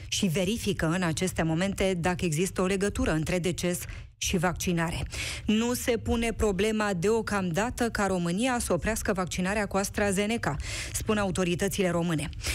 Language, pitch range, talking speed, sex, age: Romanian, 175-235 Hz, 135 wpm, female, 20-39